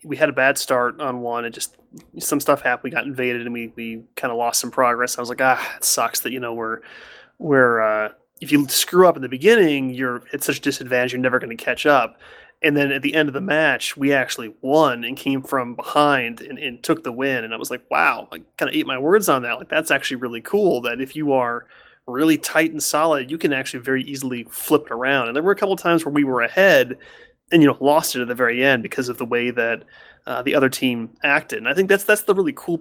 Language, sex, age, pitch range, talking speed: English, male, 30-49, 125-155 Hz, 265 wpm